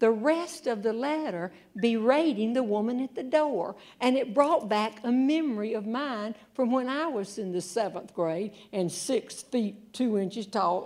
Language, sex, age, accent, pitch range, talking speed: English, female, 60-79, American, 195-260 Hz, 180 wpm